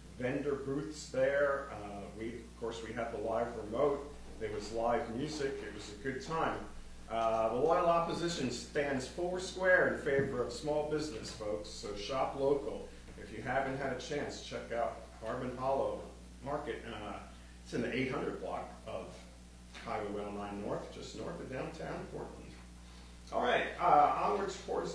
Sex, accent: male, American